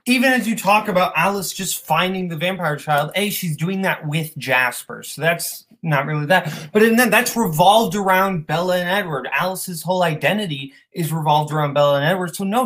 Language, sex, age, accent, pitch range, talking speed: English, male, 20-39, American, 155-205 Hz, 205 wpm